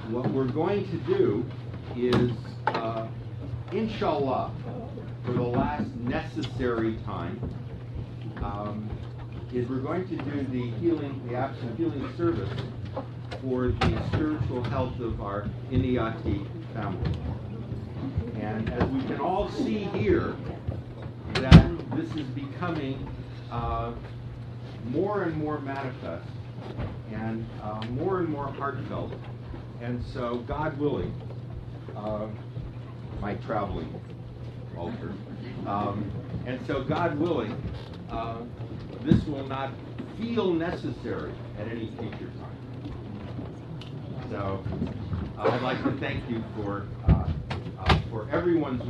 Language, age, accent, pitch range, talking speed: English, 50-69, American, 115-125 Hz, 110 wpm